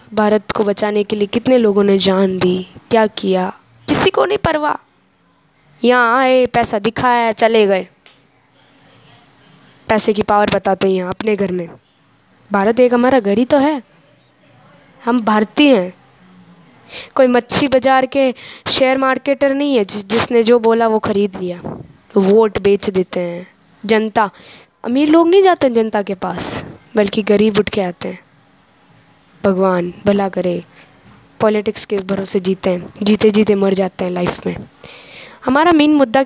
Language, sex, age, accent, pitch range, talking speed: Hindi, female, 20-39, native, 195-245 Hz, 150 wpm